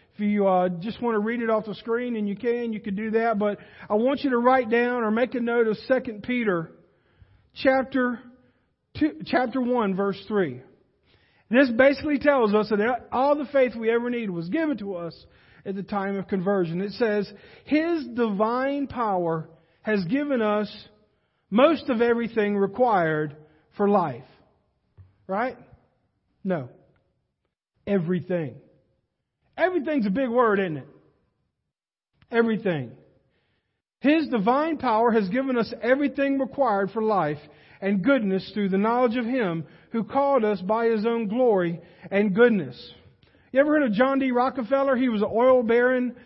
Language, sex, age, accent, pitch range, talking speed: English, male, 50-69, American, 190-245 Hz, 155 wpm